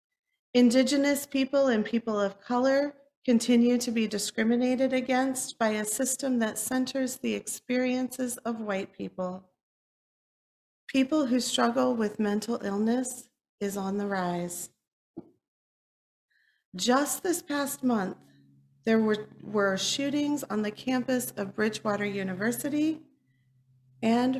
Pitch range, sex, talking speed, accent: 195-265 Hz, female, 115 wpm, American